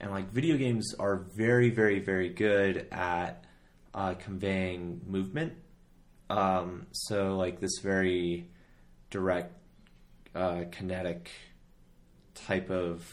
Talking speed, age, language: 105 wpm, 30-49, English